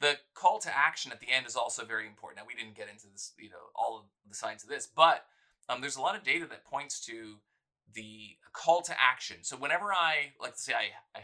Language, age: English, 30-49